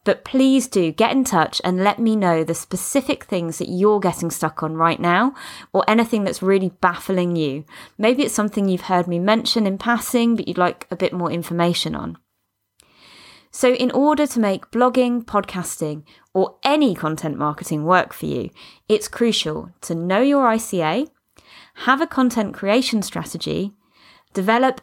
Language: English